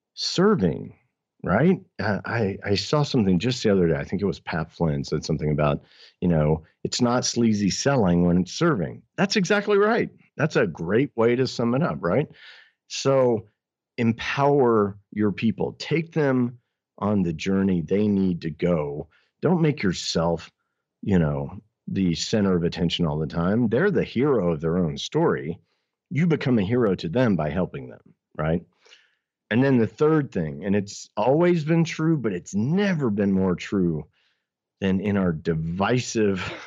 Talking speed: 165 wpm